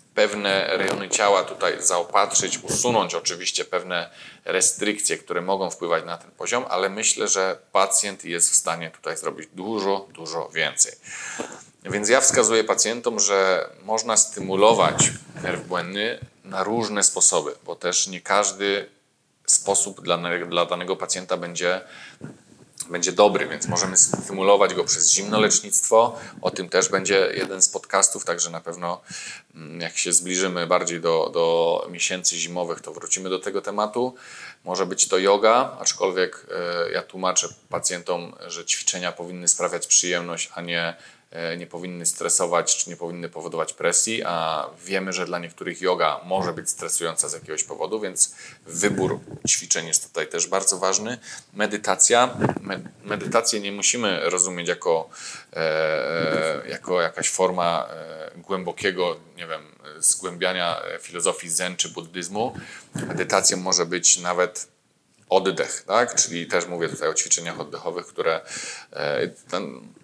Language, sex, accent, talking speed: Polish, male, native, 135 wpm